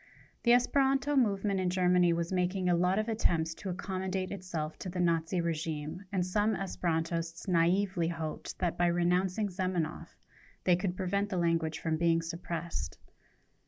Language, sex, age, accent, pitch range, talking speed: English, female, 30-49, American, 175-205 Hz, 155 wpm